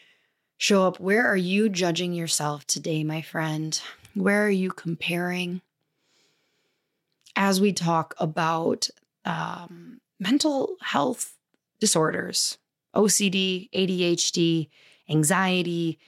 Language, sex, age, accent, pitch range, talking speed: English, female, 20-39, American, 165-200 Hz, 95 wpm